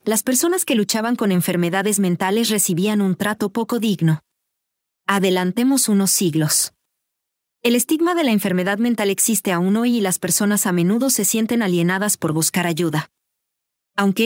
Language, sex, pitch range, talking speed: English, female, 180-230 Hz, 150 wpm